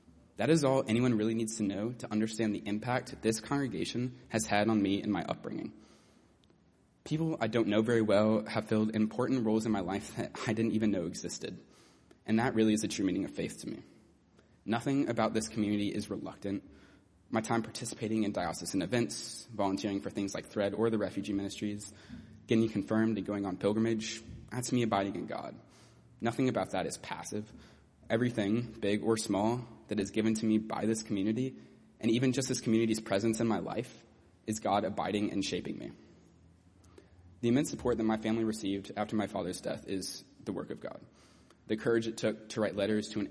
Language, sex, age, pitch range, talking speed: English, male, 20-39, 100-115 Hz, 195 wpm